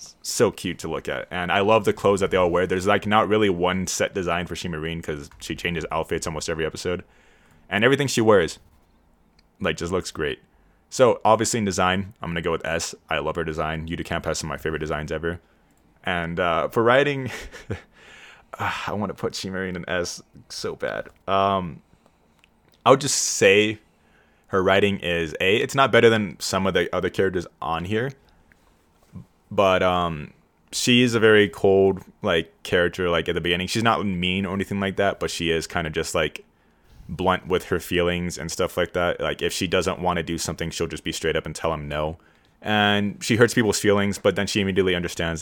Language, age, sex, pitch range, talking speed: English, 20-39, male, 80-105 Hz, 205 wpm